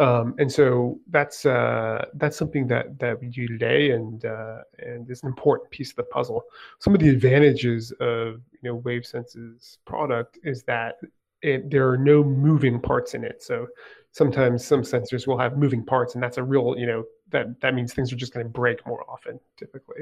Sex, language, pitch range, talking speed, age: male, English, 120-145 Hz, 200 wpm, 30-49